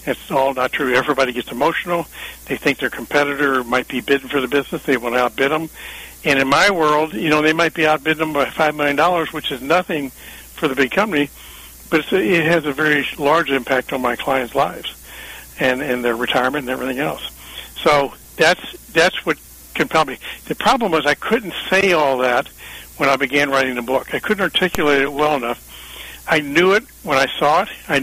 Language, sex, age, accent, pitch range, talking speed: English, male, 60-79, American, 125-155 Hz, 205 wpm